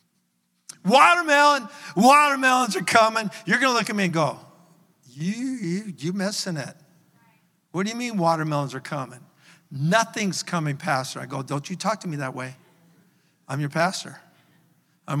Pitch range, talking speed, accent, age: 155-180 Hz, 160 wpm, American, 60-79